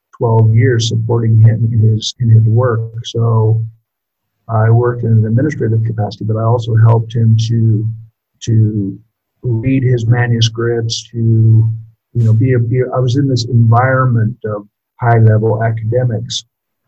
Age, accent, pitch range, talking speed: 50-69, American, 110-120 Hz, 150 wpm